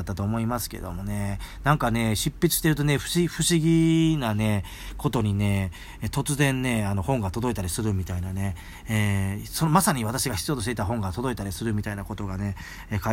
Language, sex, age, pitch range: Japanese, male, 40-59, 100-140 Hz